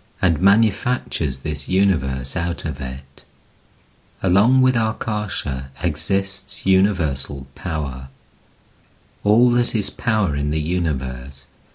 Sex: male